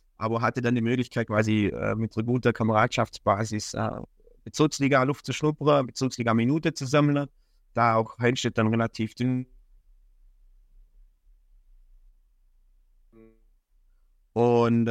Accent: German